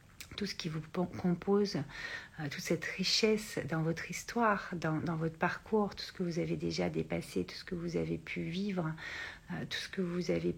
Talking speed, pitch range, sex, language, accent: 205 wpm, 150-190 Hz, female, French, French